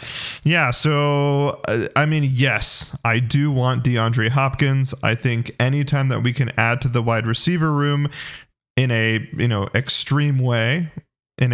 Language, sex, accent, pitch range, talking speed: English, male, American, 120-145 Hz, 150 wpm